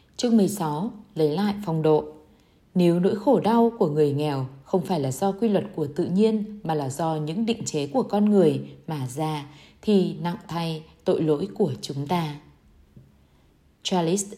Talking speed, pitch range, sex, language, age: 175 wpm, 150-205 Hz, female, Vietnamese, 20-39